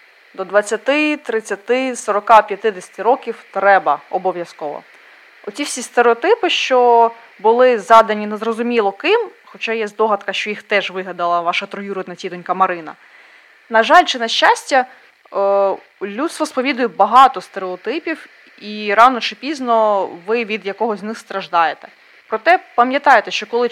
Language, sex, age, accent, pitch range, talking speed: Ukrainian, female, 20-39, native, 195-270 Hz, 125 wpm